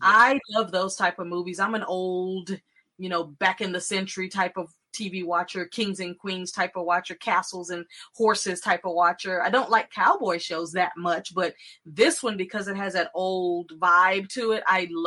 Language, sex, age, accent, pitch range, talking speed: English, female, 20-39, American, 170-210 Hz, 210 wpm